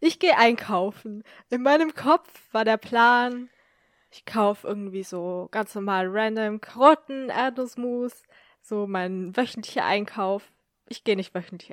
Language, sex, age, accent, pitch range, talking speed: German, female, 10-29, German, 210-275 Hz, 135 wpm